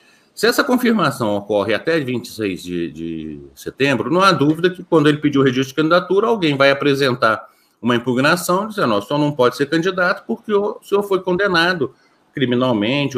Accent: Brazilian